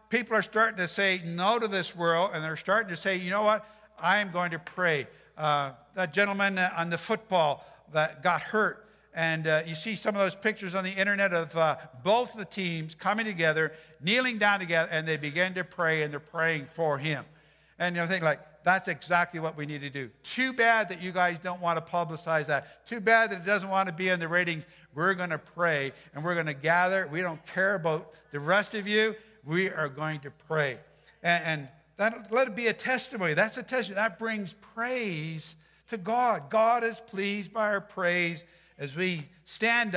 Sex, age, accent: male, 60-79, American